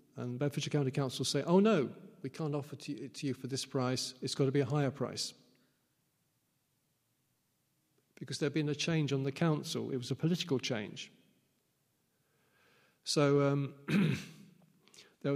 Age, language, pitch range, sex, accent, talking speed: 40-59, English, 130-155 Hz, male, British, 155 wpm